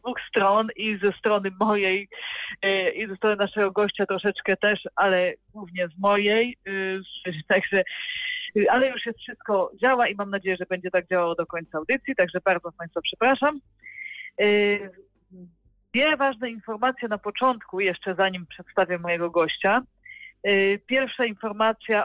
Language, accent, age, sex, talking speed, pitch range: Polish, native, 40-59, female, 135 wpm, 185-235 Hz